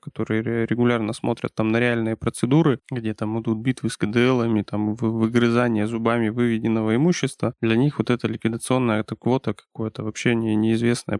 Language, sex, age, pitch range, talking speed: Russian, male, 20-39, 115-135 Hz, 150 wpm